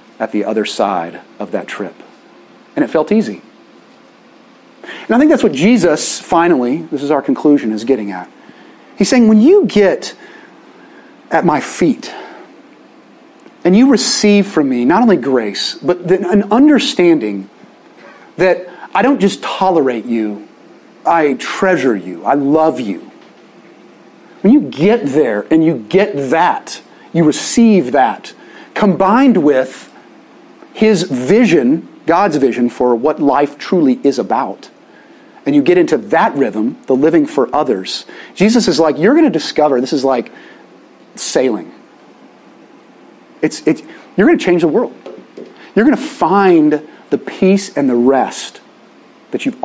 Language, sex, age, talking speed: English, male, 40-59, 140 wpm